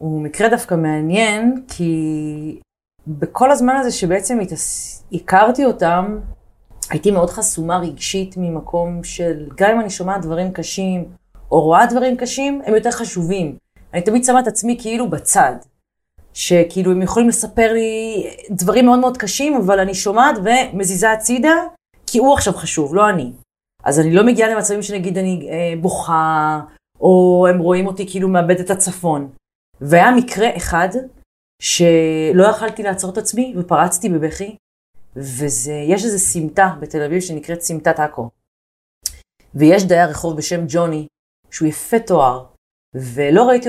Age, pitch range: 30-49, 160-220 Hz